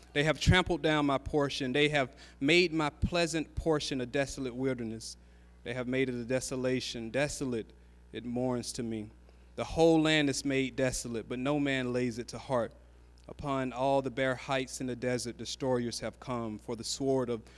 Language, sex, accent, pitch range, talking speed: English, male, American, 110-135 Hz, 185 wpm